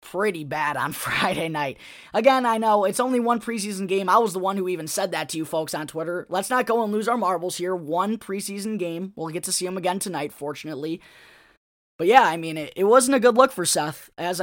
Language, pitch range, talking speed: English, 175-220 Hz, 240 wpm